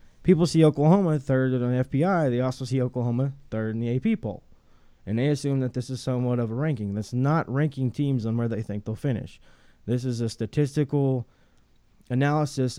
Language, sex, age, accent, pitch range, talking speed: English, male, 20-39, American, 120-145 Hz, 195 wpm